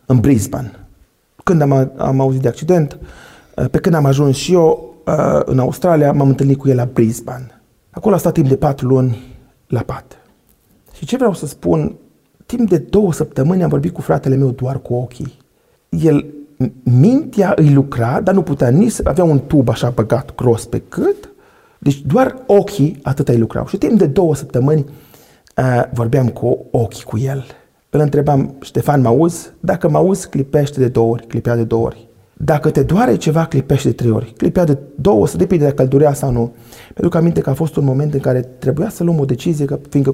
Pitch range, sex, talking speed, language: 125-165 Hz, male, 200 wpm, Romanian